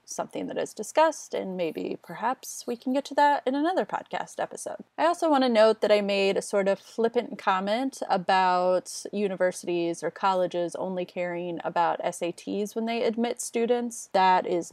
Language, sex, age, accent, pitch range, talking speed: English, female, 30-49, American, 185-235 Hz, 175 wpm